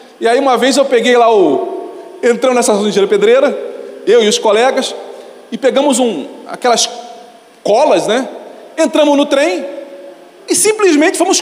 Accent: Brazilian